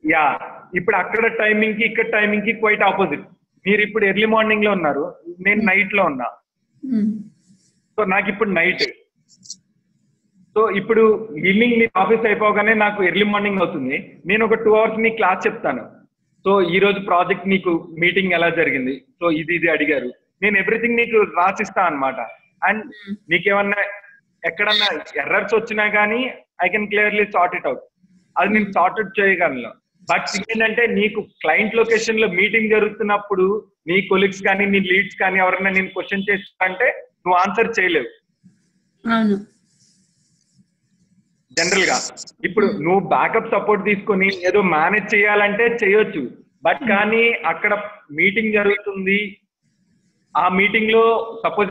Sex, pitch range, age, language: male, 185-220 Hz, 40-59, Telugu